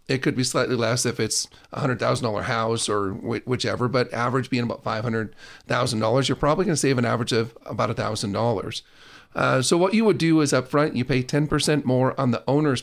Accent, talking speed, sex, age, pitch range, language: American, 200 wpm, male, 40-59, 120-145 Hz, English